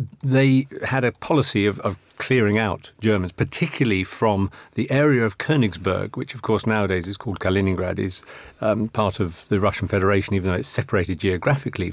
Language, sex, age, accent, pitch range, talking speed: English, male, 50-69, British, 100-125 Hz, 170 wpm